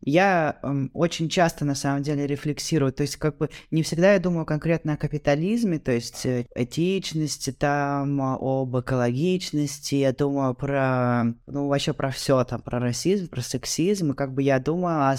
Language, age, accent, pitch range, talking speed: Russian, 20-39, native, 130-150 Hz, 175 wpm